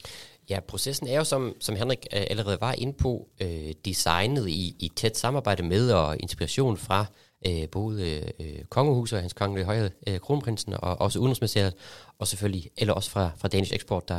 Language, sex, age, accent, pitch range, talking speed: Danish, male, 30-49, native, 95-115 Hz, 180 wpm